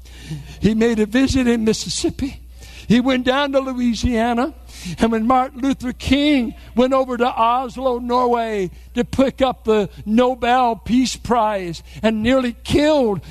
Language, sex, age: English, male, 60-79